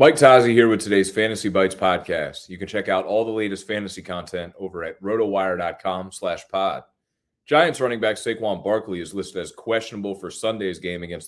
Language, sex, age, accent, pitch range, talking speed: English, male, 30-49, American, 95-110 Hz, 185 wpm